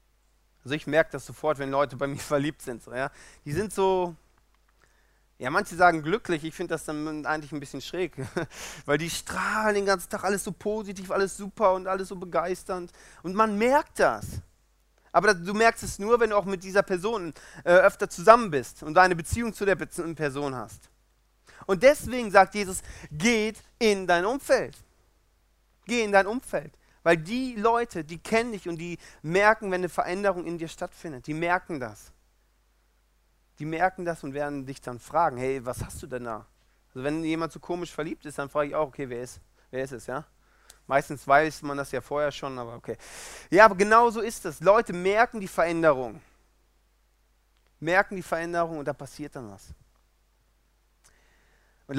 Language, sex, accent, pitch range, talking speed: German, male, German, 140-195 Hz, 185 wpm